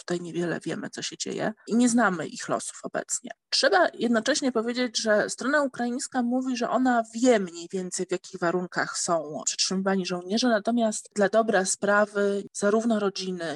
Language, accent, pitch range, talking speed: Polish, native, 180-225 Hz, 160 wpm